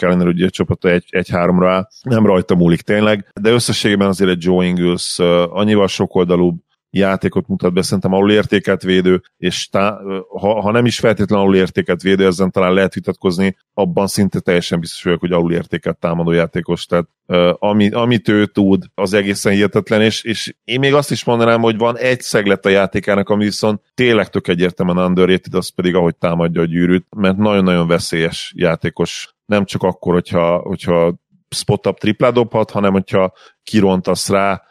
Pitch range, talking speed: 90-100 Hz, 170 wpm